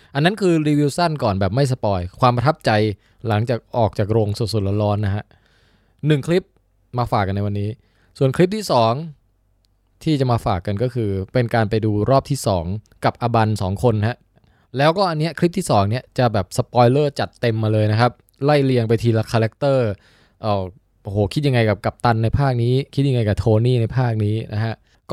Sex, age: male, 20-39